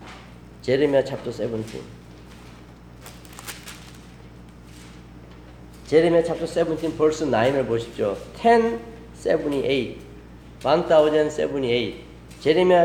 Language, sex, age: Korean, male, 40-59